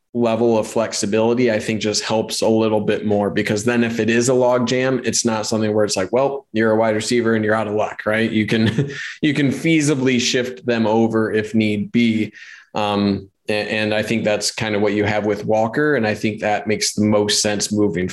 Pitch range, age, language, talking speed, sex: 105-120 Hz, 20-39, English, 230 wpm, male